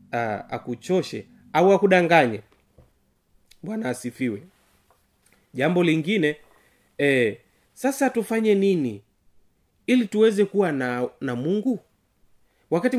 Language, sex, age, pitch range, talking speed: Swahili, male, 30-49, 150-225 Hz, 90 wpm